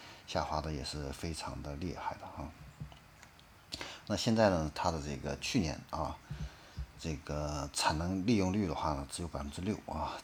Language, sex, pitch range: Chinese, male, 75-100 Hz